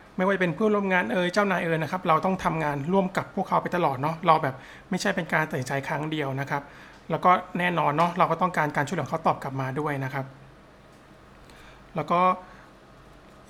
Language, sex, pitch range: Thai, male, 150-185 Hz